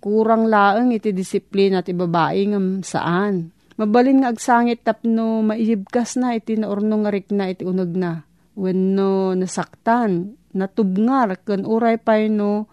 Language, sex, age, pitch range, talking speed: Filipino, female, 40-59, 175-215 Hz, 125 wpm